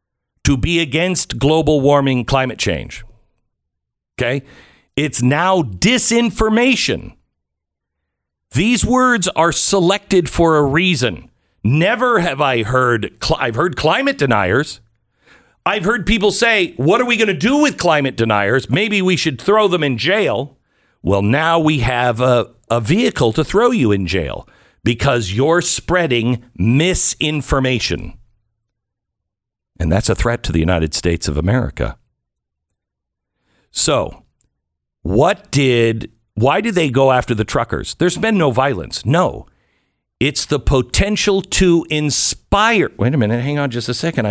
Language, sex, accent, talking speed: English, male, American, 135 wpm